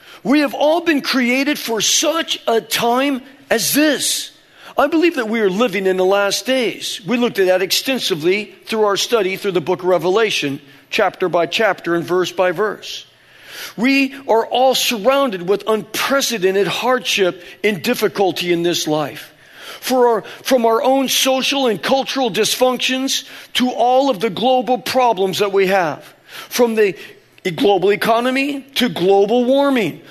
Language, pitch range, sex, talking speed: English, 200-265 Hz, male, 155 wpm